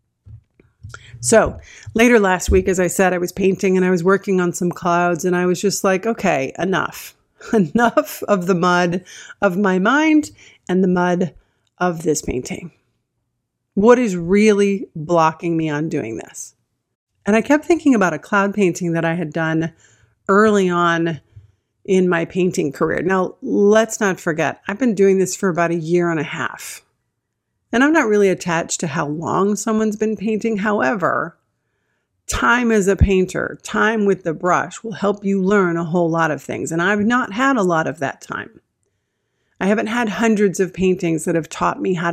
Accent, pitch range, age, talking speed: American, 165-205 Hz, 40-59, 180 wpm